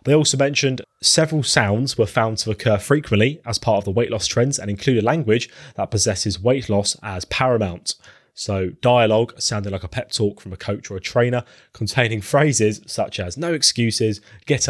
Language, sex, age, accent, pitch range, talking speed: English, male, 20-39, British, 100-125 Hz, 190 wpm